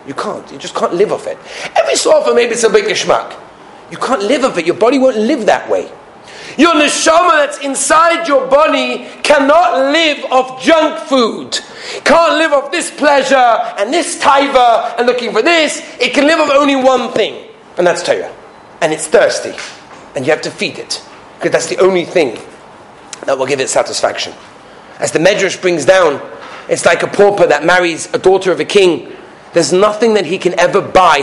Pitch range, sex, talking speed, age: 200-305 Hz, male, 195 wpm, 40-59